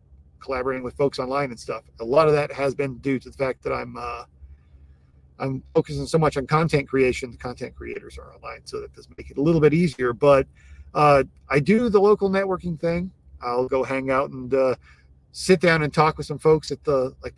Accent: American